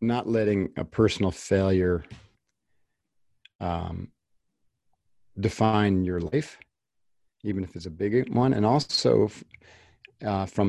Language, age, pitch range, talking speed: English, 50-69, 95-115 Hz, 105 wpm